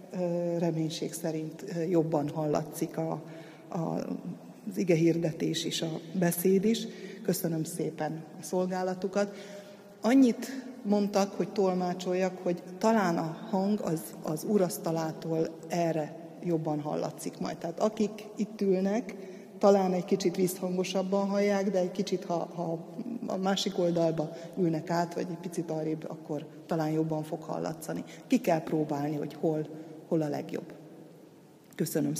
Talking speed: 130 wpm